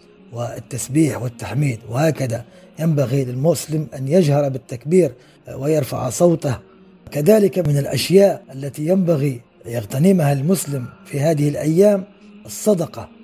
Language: Arabic